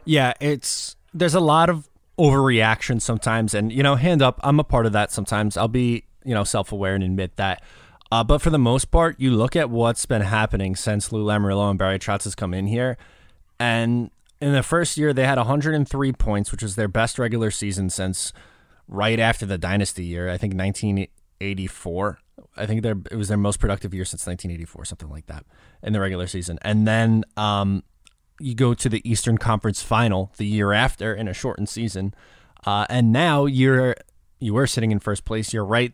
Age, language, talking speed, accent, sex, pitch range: 20-39, English, 200 wpm, American, male, 100-130 Hz